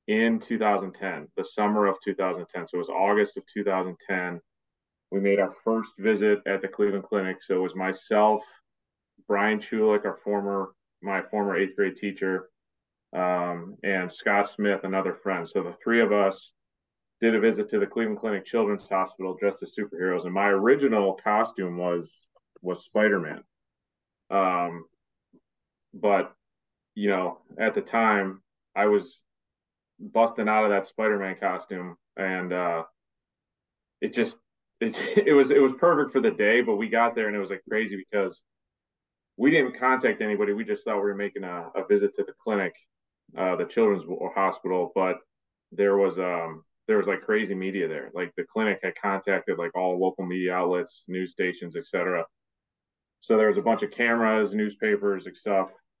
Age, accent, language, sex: 30-49, American, English, male